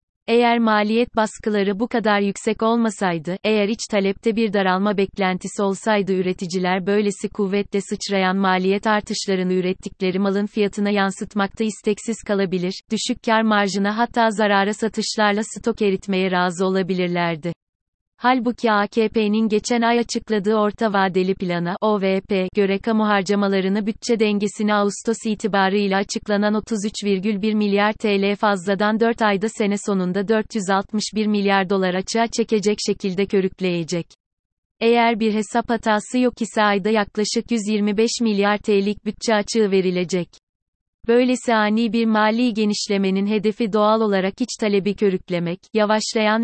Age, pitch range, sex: 30-49, 195-220 Hz, female